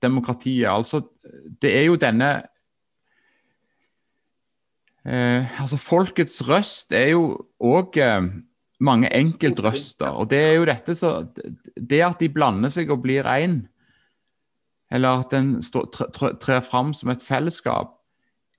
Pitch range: 115-155 Hz